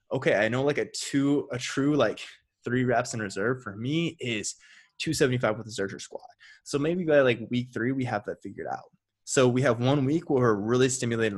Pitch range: 110-140 Hz